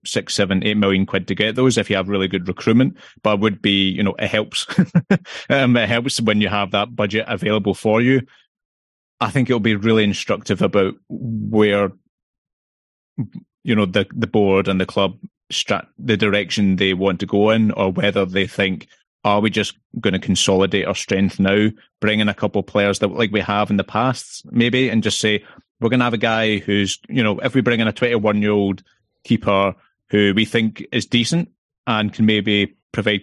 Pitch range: 100-110 Hz